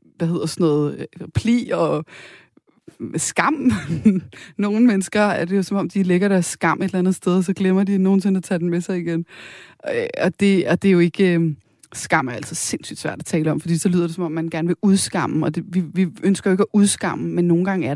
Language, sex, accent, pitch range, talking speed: Danish, female, native, 170-200 Hz, 230 wpm